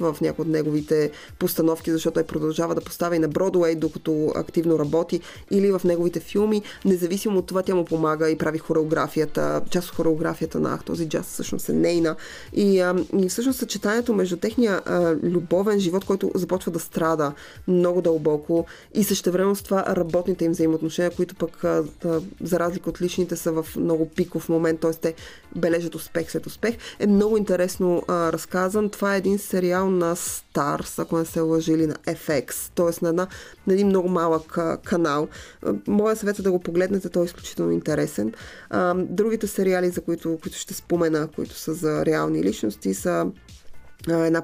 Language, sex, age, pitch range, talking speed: Bulgarian, female, 20-39, 160-185 Hz, 175 wpm